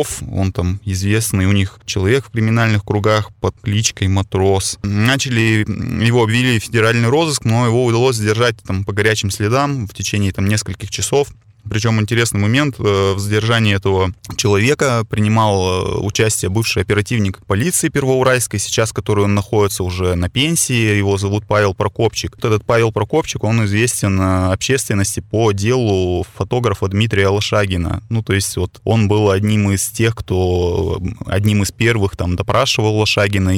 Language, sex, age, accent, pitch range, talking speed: Russian, male, 20-39, native, 100-115 Hz, 145 wpm